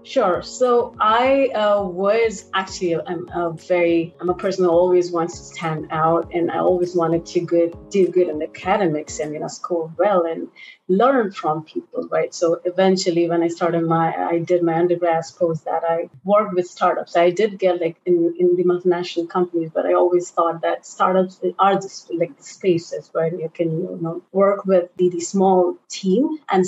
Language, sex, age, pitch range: English, female, 30-49, 170-190 Hz